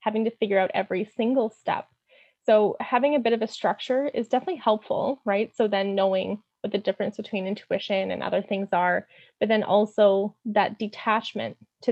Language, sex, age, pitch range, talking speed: English, female, 20-39, 200-235 Hz, 180 wpm